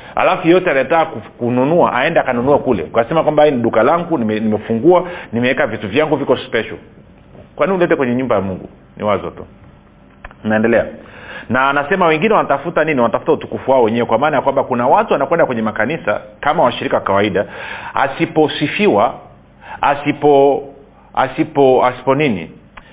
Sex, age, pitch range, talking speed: male, 40-59, 120-165 Hz, 140 wpm